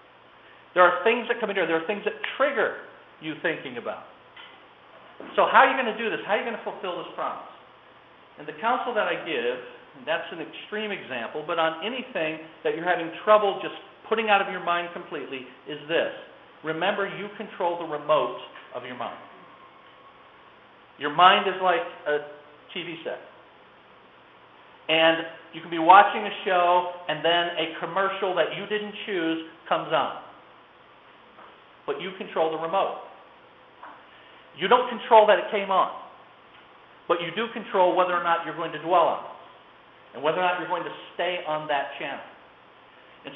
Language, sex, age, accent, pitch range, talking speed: English, male, 50-69, American, 165-215 Hz, 175 wpm